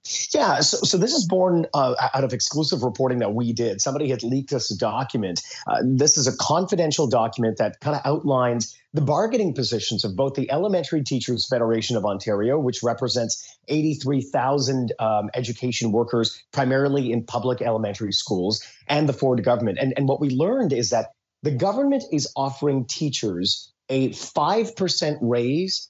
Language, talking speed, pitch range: English, 160 wpm, 115-145 Hz